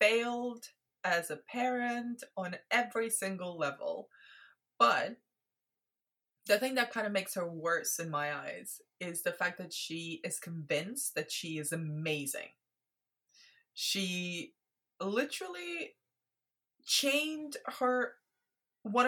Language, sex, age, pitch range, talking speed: English, female, 20-39, 175-240 Hz, 115 wpm